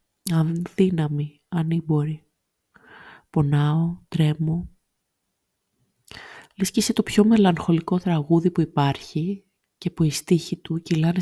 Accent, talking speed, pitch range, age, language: native, 90 wpm, 155-185 Hz, 30-49, Greek